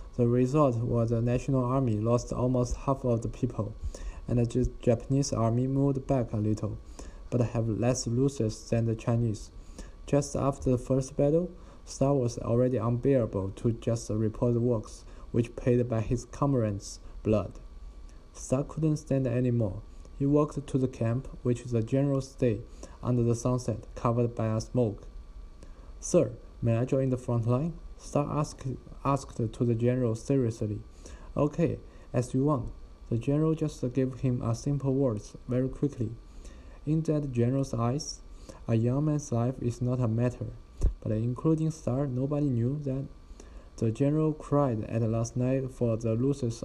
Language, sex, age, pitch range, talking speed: English, male, 20-39, 115-135 Hz, 160 wpm